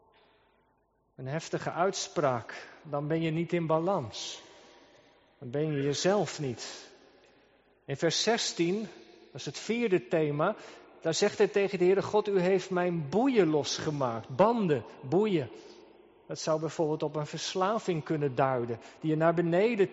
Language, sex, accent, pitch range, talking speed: Dutch, male, Dutch, 170-200 Hz, 145 wpm